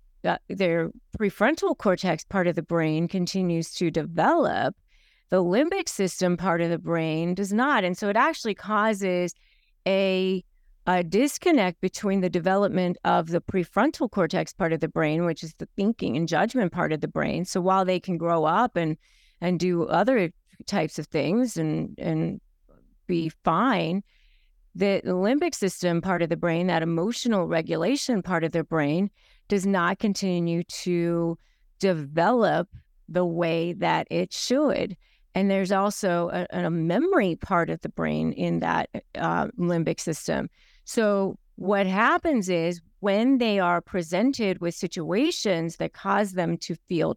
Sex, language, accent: female, English, American